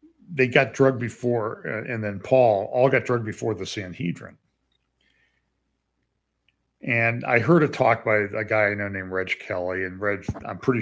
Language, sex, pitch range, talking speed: English, male, 95-130 Hz, 165 wpm